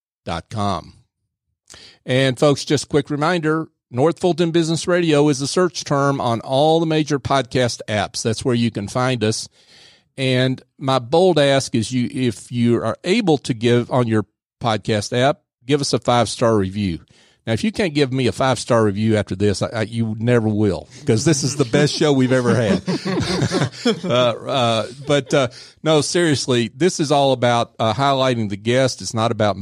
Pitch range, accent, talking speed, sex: 110-145 Hz, American, 180 wpm, male